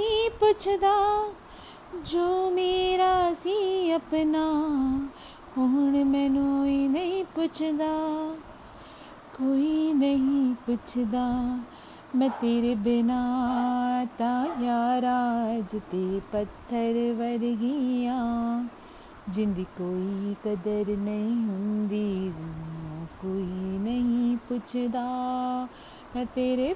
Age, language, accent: 30-49, Hindi, native